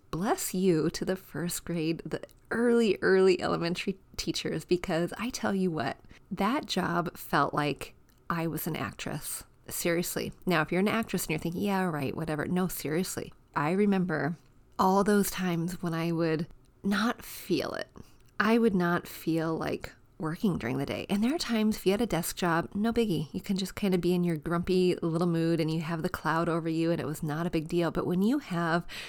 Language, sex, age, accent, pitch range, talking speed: English, female, 30-49, American, 165-205 Hz, 205 wpm